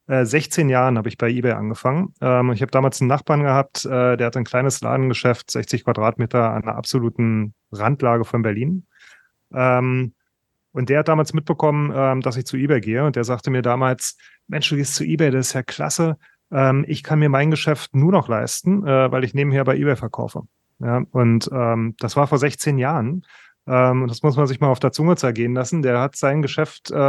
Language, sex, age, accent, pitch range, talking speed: German, male, 30-49, German, 120-145 Hz, 190 wpm